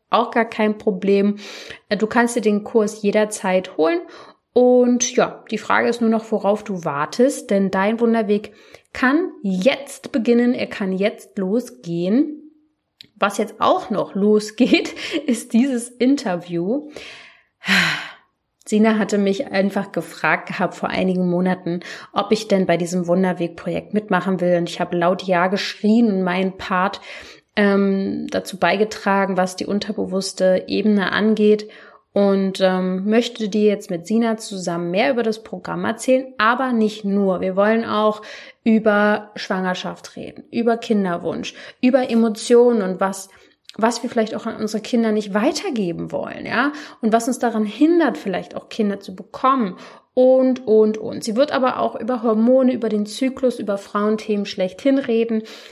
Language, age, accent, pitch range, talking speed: German, 30-49, German, 195-240 Hz, 145 wpm